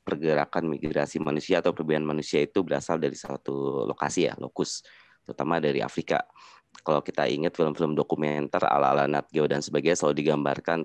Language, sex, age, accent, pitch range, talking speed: Indonesian, male, 20-39, native, 75-85 Hz, 160 wpm